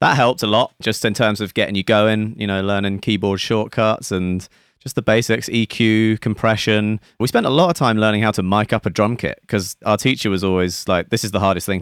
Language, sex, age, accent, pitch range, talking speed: English, male, 30-49, British, 90-110 Hz, 240 wpm